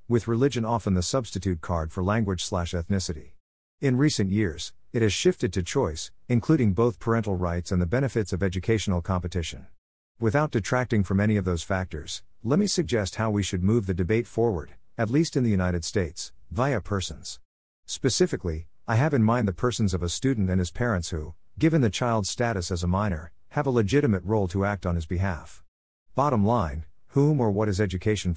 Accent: American